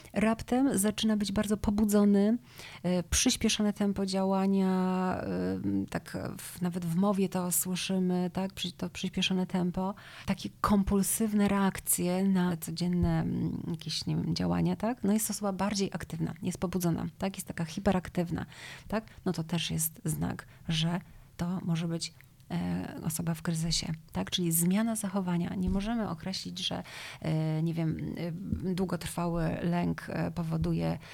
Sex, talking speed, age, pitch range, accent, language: female, 130 wpm, 30-49, 165-195 Hz, native, Polish